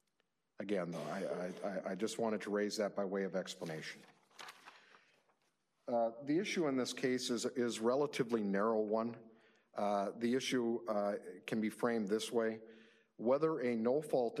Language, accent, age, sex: English, American, 50-69, male